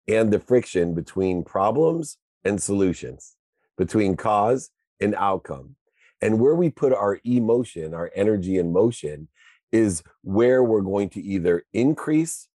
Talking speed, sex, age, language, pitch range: 135 wpm, male, 40-59, English, 95-120 Hz